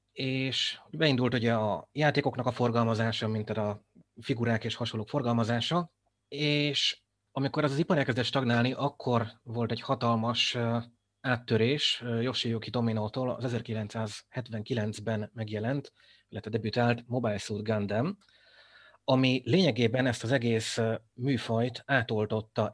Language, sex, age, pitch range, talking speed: Hungarian, male, 30-49, 110-130 Hz, 110 wpm